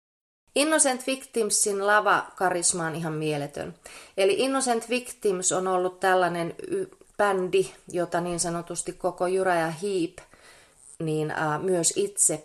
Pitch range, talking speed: 170-230 Hz, 110 wpm